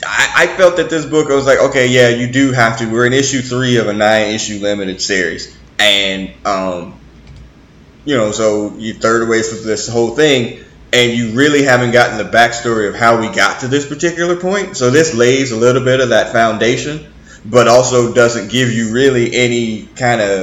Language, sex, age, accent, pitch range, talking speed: English, male, 20-39, American, 105-130 Hz, 200 wpm